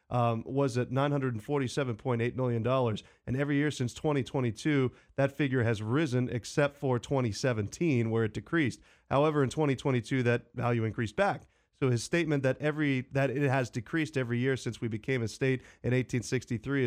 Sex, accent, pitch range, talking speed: male, American, 120-140 Hz, 165 wpm